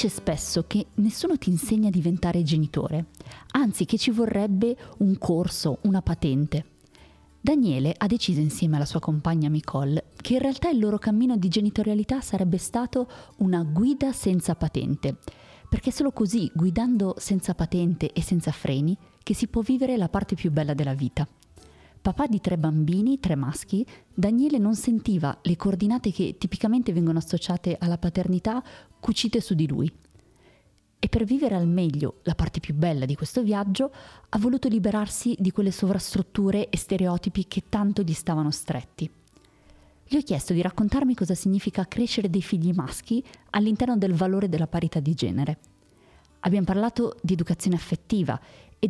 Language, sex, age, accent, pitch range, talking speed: Italian, female, 30-49, native, 160-220 Hz, 155 wpm